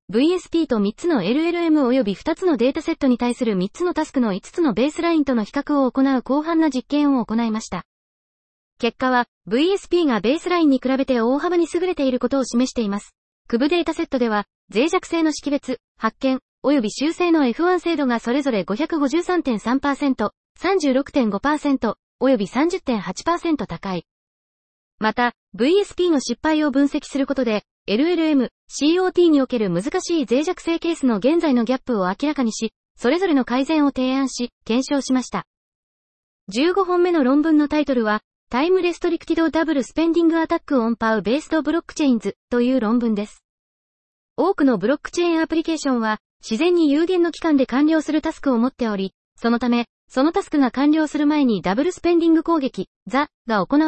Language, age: Japanese, 20-39